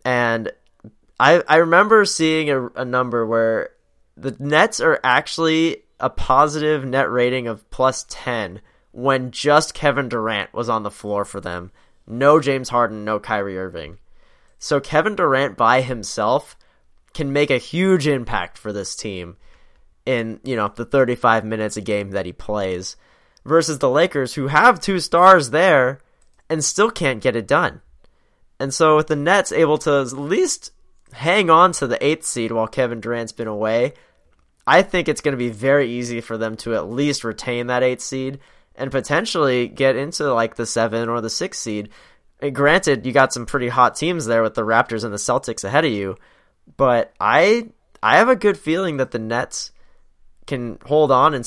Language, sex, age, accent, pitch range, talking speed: English, male, 20-39, American, 110-145 Hz, 180 wpm